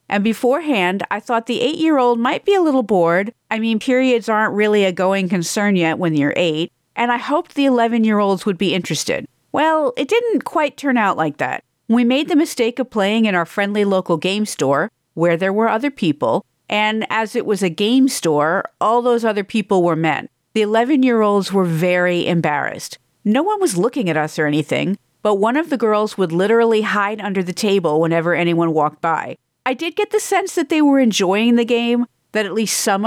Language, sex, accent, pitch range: English, female, American, 175-250 Hz